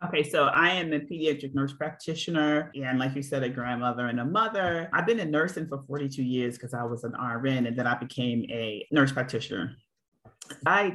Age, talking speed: 30-49, 205 wpm